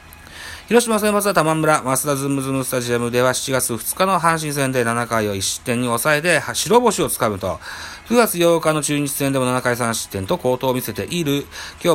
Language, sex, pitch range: Japanese, male, 105-160 Hz